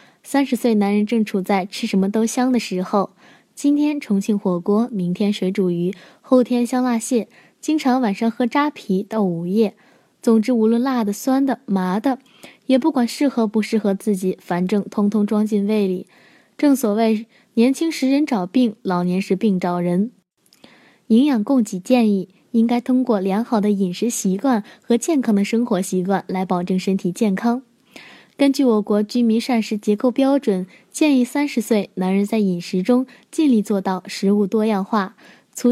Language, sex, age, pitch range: Chinese, female, 20-39, 200-250 Hz